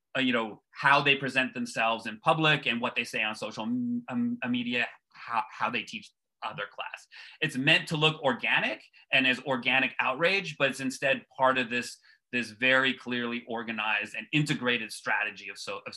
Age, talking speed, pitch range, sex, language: 30-49, 185 wpm, 120-150 Hz, male, English